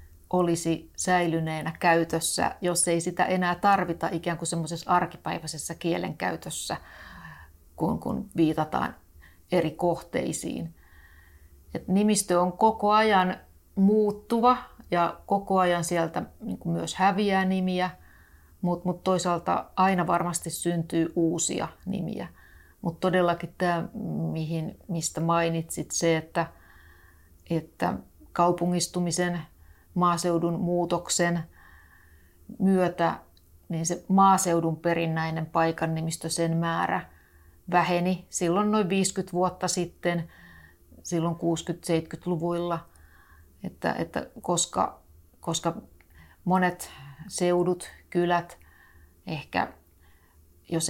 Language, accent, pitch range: Finnish, native, 155-180 Hz